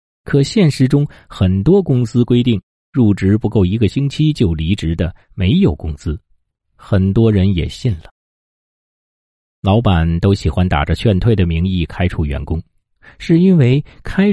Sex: male